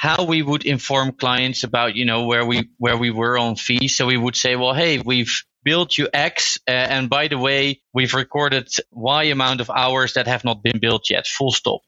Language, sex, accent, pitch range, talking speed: English, male, Dutch, 120-145 Hz, 220 wpm